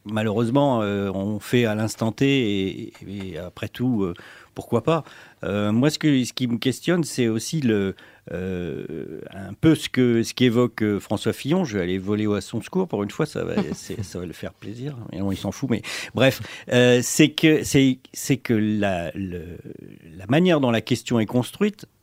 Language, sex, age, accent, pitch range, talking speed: French, male, 40-59, French, 110-150 Hz, 205 wpm